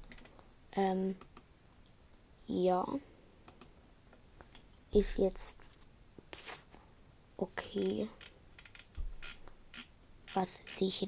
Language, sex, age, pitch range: German, female, 20-39, 185-220 Hz